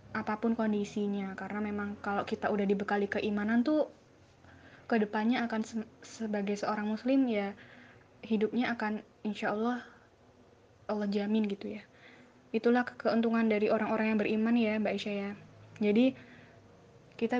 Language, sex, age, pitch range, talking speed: Indonesian, female, 20-39, 200-225 Hz, 130 wpm